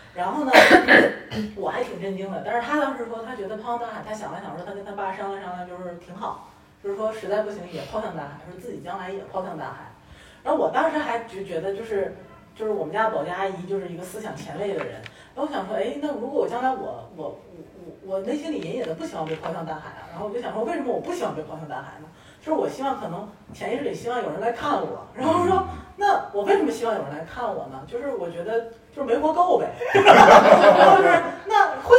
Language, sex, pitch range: Chinese, female, 195-315 Hz